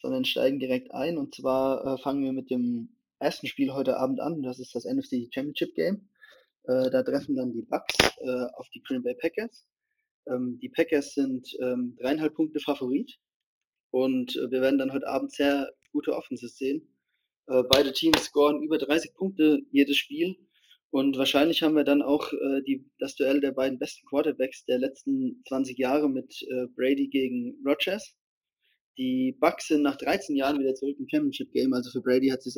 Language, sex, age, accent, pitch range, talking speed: German, male, 20-39, German, 130-150 Hz, 185 wpm